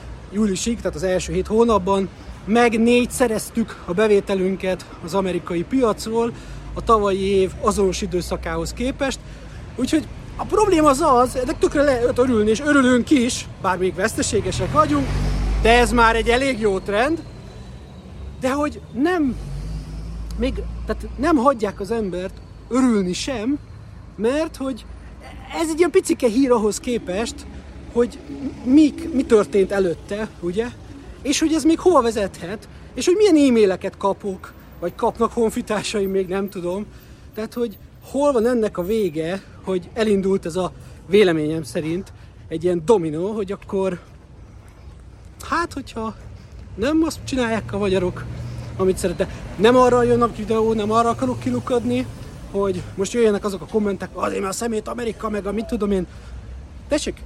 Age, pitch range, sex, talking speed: 30-49, 190-250 Hz, male, 145 wpm